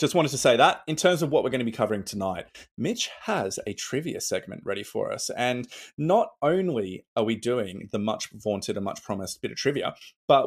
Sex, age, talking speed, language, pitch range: male, 20-39, 225 wpm, English, 100-135 Hz